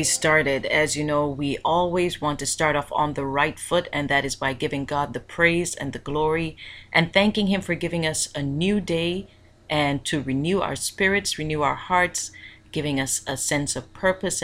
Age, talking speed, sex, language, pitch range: 30-49, 200 wpm, female, English, 130-175 Hz